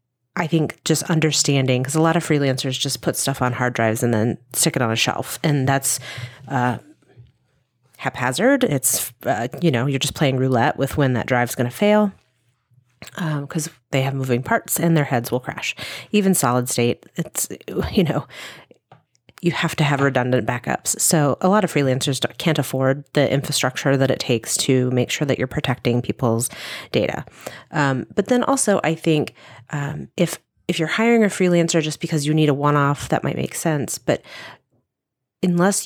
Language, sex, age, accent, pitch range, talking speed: English, female, 30-49, American, 125-160 Hz, 180 wpm